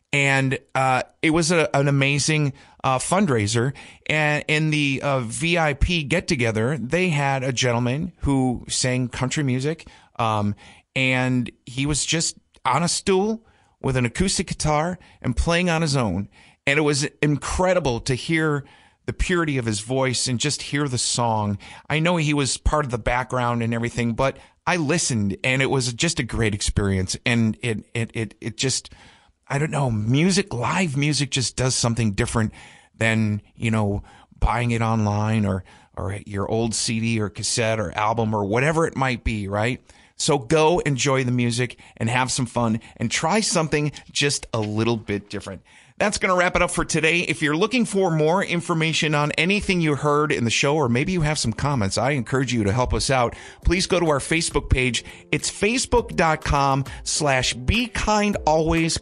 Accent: American